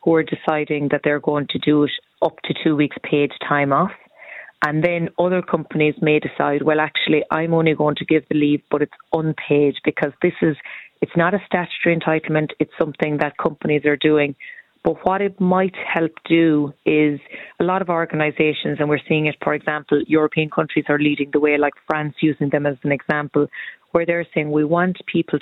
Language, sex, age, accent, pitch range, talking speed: English, female, 30-49, Irish, 150-165 Hz, 200 wpm